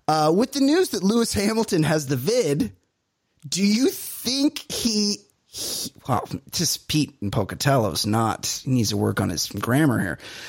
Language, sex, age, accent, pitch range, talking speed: English, male, 30-49, American, 135-200 Hz, 165 wpm